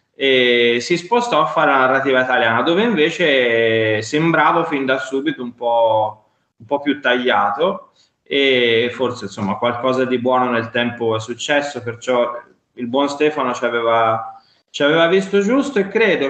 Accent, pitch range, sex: native, 125-150 Hz, male